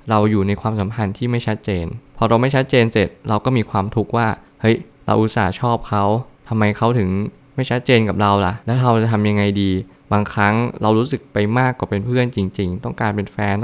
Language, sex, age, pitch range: Thai, male, 20-39, 100-125 Hz